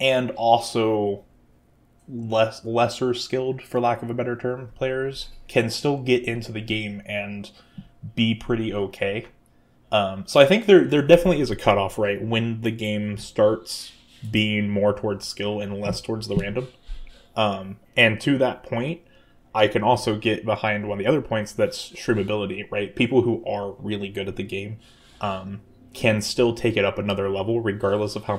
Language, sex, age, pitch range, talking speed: English, male, 20-39, 100-120 Hz, 175 wpm